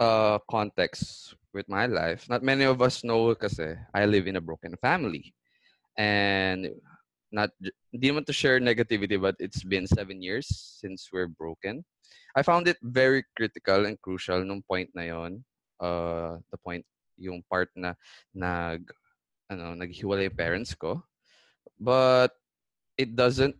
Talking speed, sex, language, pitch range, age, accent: 140 wpm, male, English, 90-115 Hz, 20-39, Filipino